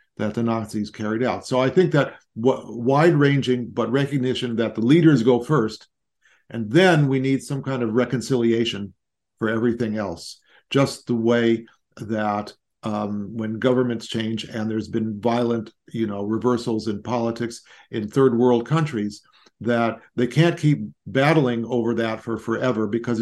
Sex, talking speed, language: male, 160 wpm, English